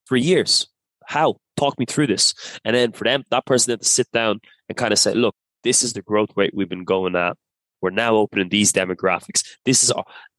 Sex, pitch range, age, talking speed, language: male, 100-125 Hz, 20-39, 225 wpm, English